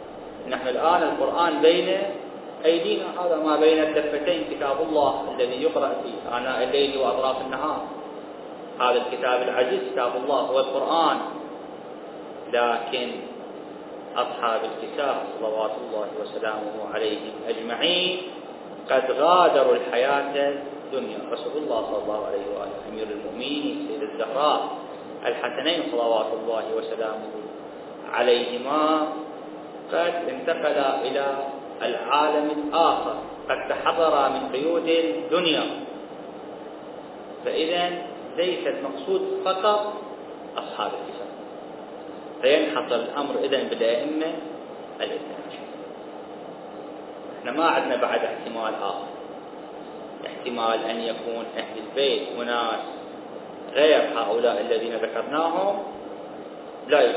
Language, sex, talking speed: Arabic, male, 95 wpm